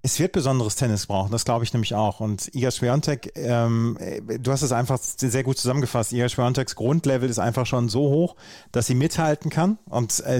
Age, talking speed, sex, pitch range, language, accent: 40-59, 200 wpm, male, 110-130 Hz, German, German